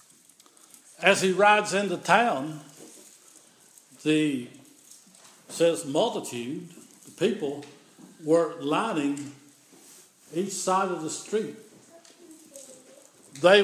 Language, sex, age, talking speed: English, male, 60-79, 80 wpm